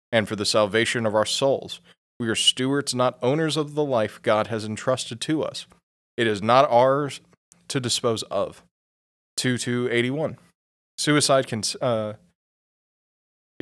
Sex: male